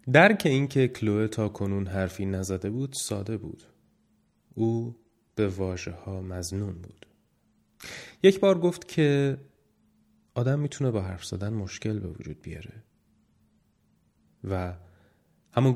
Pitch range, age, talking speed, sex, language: 95-120 Hz, 30-49, 125 wpm, male, Persian